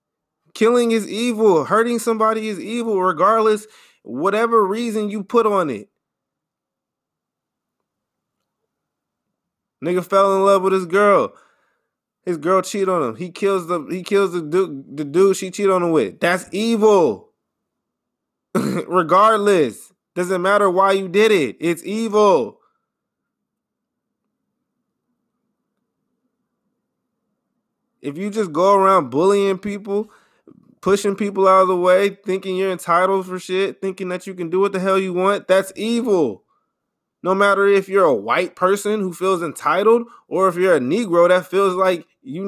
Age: 20-39